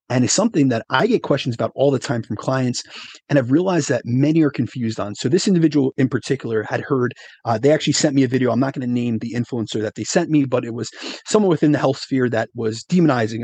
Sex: male